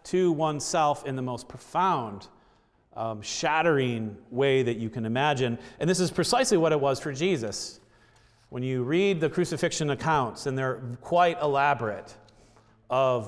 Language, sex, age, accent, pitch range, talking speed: English, male, 40-59, American, 120-155 Hz, 150 wpm